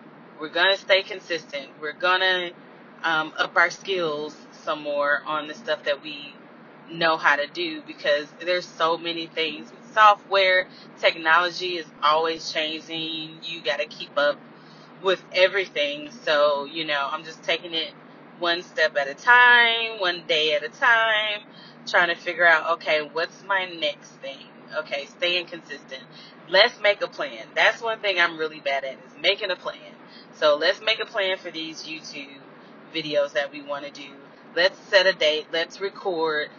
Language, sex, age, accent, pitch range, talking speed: English, female, 20-39, American, 155-210 Hz, 170 wpm